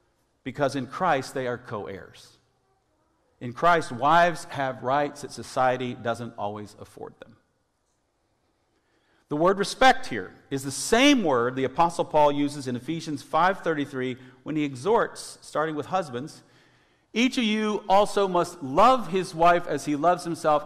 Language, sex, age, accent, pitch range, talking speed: English, male, 50-69, American, 110-160 Hz, 145 wpm